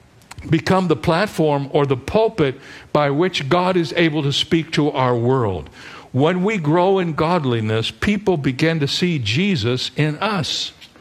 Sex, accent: male, American